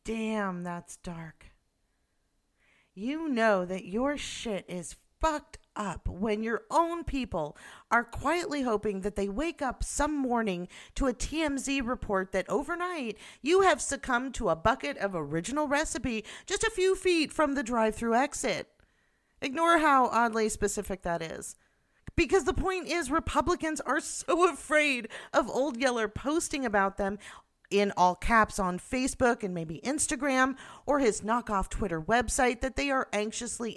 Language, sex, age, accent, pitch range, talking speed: English, female, 40-59, American, 200-285 Hz, 150 wpm